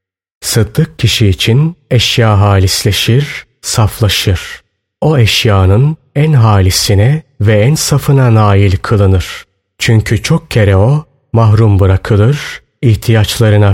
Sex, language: male, Turkish